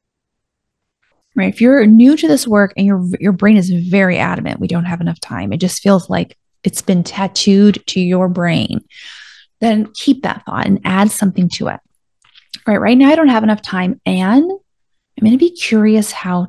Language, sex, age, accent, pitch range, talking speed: English, female, 30-49, American, 190-255 Hz, 195 wpm